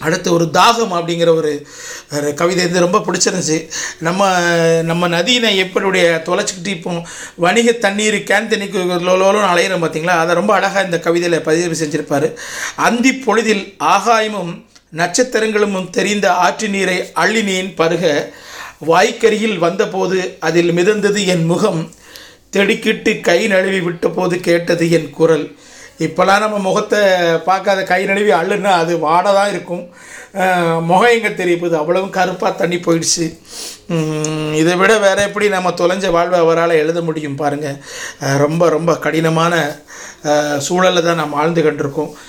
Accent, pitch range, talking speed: native, 160-200 Hz, 120 wpm